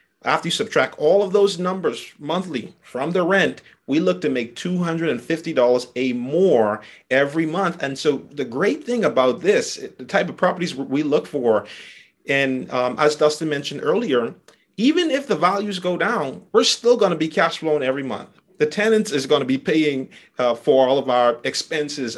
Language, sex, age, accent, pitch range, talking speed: English, male, 30-49, American, 130-175 Hz, 185 wpm